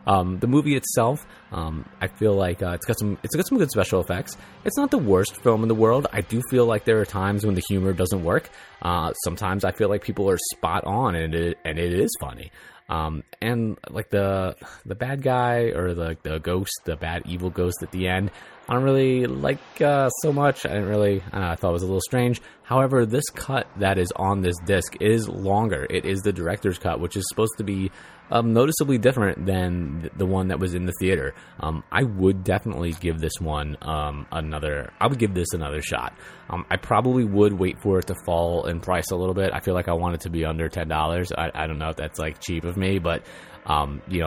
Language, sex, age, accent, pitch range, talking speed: English, male, 20-39, American, 85-105 Hz, 240 wpm